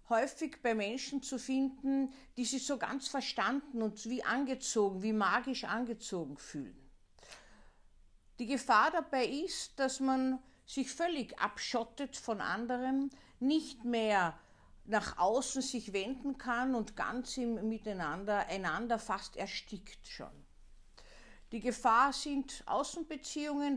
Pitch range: 195-260 Hz